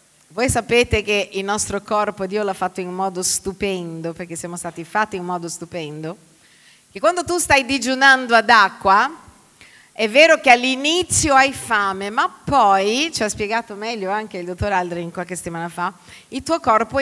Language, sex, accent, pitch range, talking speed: Italian, female, native, 190-255 Hz, 170 wpm